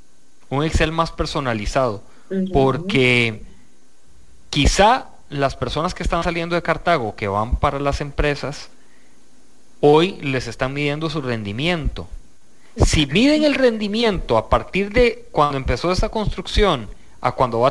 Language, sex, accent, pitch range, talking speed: English, male, Mexican, 125-170 Hz, 130 wpm